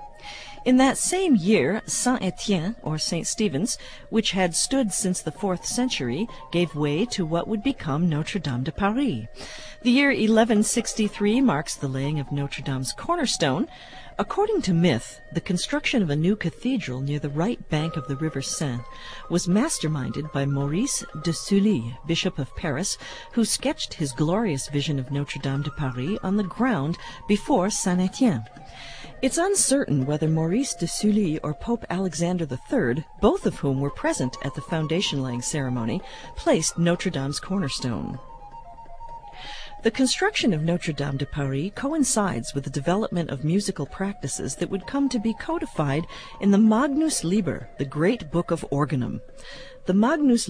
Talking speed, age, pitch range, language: 155 wpm, 50-69, 145-225 Hz, English